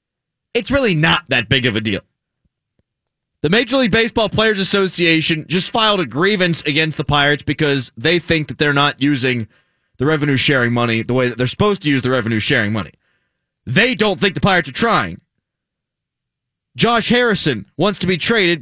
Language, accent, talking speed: English, American, 175 wpm